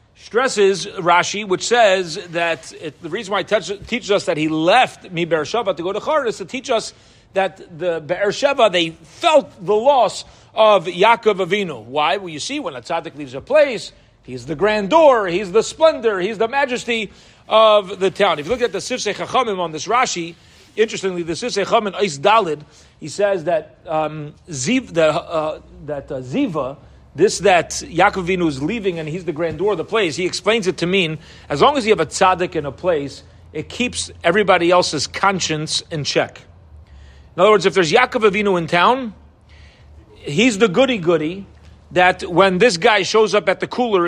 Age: 40-59